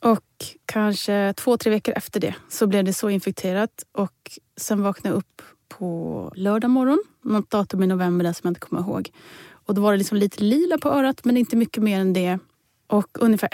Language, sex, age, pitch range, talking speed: Swedish, female, 30-49, 190-230 Hz, 210 wpm